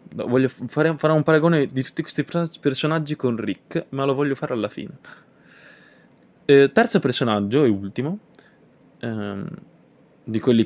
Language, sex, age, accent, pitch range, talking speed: Italian, male, 20-39, native, 105-135 Hz, 140 wpm